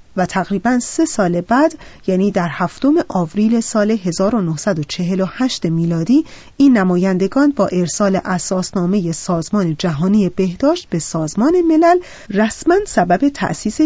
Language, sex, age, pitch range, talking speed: Persian, female, 30-49, 175-230 Hz, 115 wpm